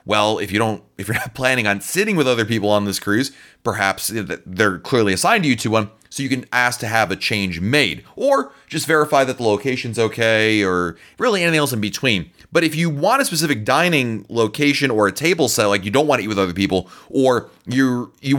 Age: 30-49